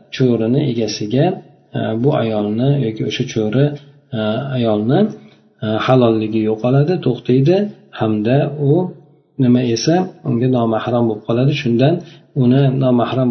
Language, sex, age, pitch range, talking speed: Bulgarian, male, 40-59, 110-140 Hz, 110 wpm